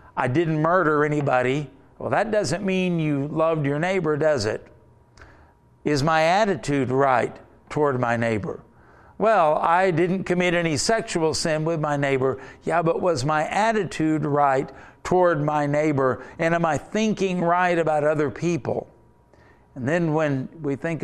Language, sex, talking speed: English, male, 150 wpm